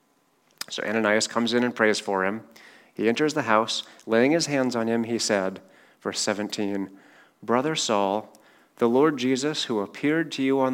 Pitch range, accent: 105-125 Hz, American